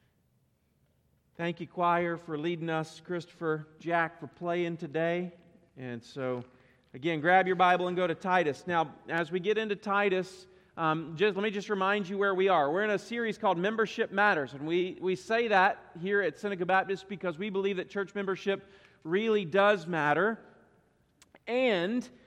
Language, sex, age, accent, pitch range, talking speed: English, male, 40-59, American, 180-240 Hz, 165 wpm